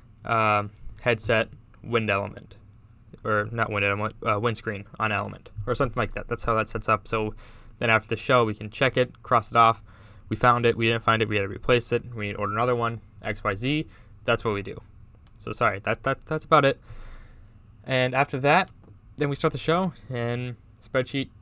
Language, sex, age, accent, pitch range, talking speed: English, male, 20-39, American, 105-120 Hz, 210 wpm